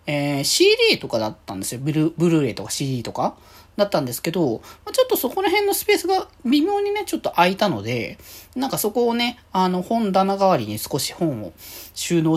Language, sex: Japanese, male